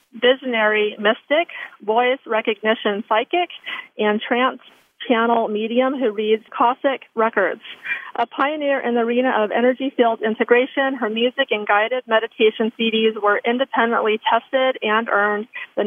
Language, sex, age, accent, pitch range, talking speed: English, female, 40-59, American, 220-255 Hz, 130 wpm